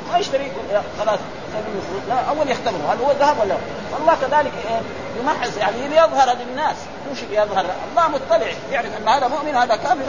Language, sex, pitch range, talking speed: Arabic, male, 210-285 Hz, 170 wpm